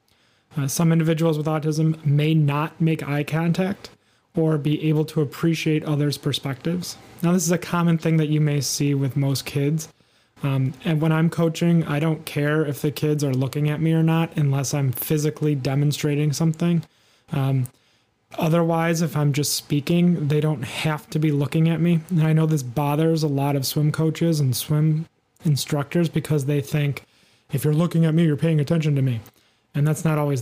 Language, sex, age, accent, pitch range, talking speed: English, male, 30-49, American, 145-165 Hz, 190 wpm